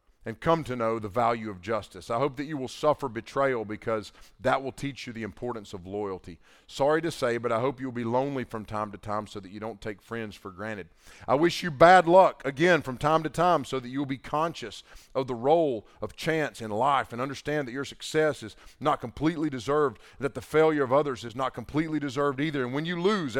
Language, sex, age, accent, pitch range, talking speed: English, male, 40-59, American, 115-150 Hz, 230 wpm